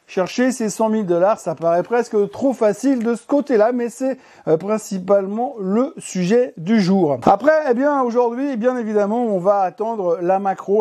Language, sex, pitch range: French, male, 170-220 Hz